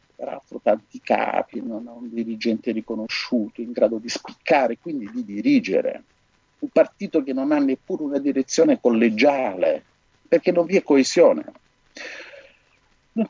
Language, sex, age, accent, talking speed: Italian, male, 50-69, native, 140 wpm